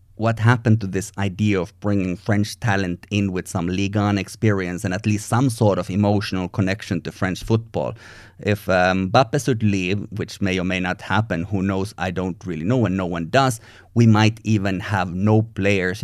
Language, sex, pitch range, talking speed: English, male, 95-115 Hz, 200 wpm